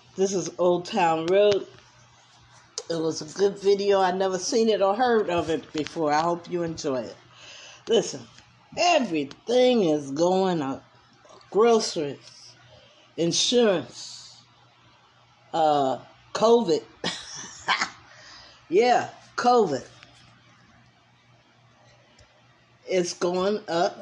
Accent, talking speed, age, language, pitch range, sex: American, 95 wpm, 50-69, English, 170-235 Hz, female